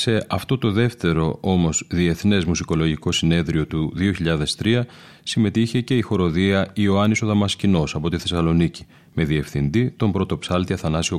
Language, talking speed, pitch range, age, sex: Greek, 130 wpm, 85-105 Hz, 30-49, male